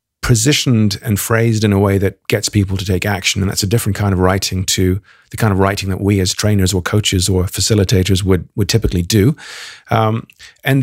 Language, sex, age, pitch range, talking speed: English, male, 40-59, 95-115 Hz, 210 wpm